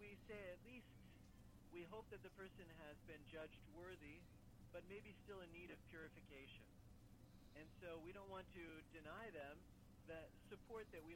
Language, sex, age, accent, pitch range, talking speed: English, male, 40-59, American, 135-185 Hz, 170 wpm